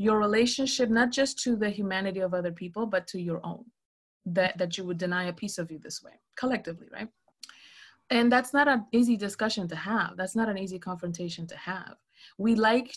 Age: 30-49